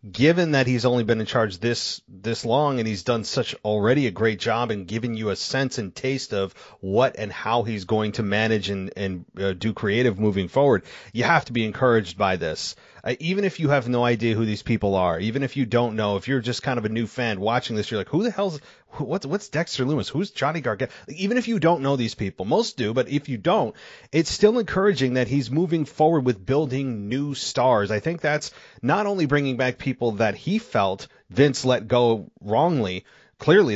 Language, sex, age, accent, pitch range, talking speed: English, male, 30-49, American, 115-155 Hz, 225 wpm